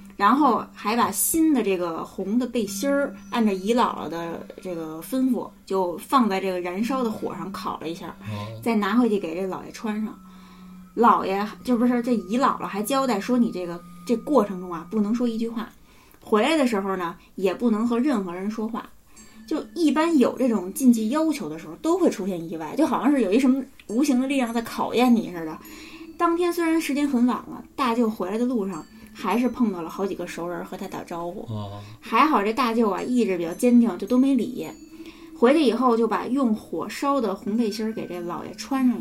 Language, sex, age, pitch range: Chinese, female, 20-39, 195-250 Hz